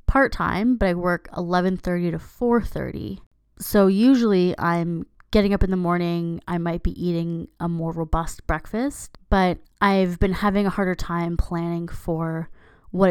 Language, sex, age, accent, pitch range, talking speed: English, female, 20-39, American, 170-205 Hz, 155 wpm